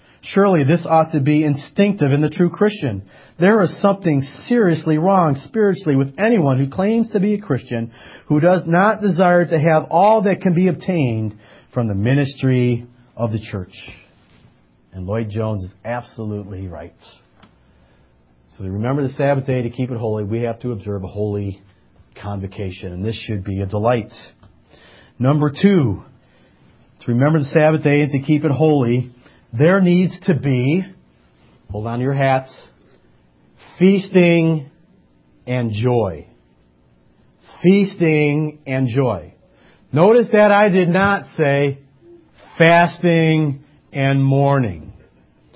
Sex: male